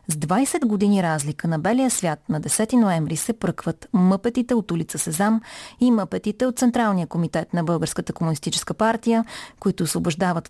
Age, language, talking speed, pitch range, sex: 30-49, Bulgarian, 155 wpm, 165-225 Hz, female